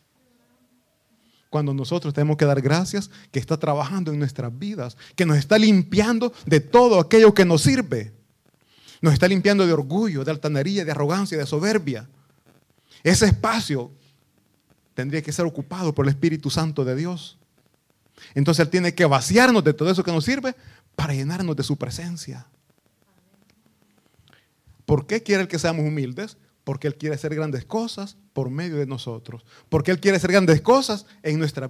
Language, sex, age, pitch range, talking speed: Italian, male, 30-49, 140-185 Hz, 160 wpm